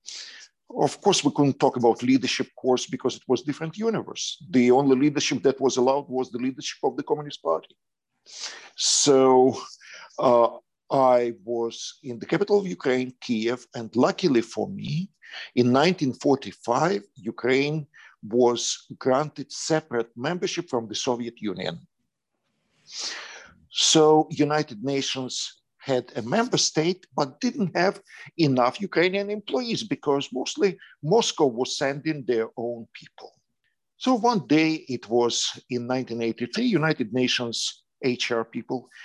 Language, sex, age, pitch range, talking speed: English, male, 50-69, 125-165 Hz, 130 wpm